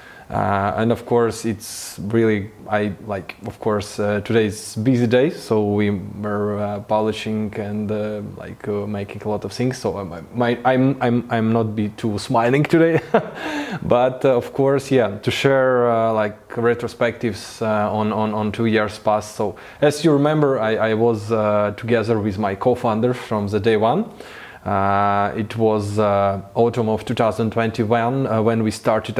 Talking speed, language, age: 175 wpm, English, 20-39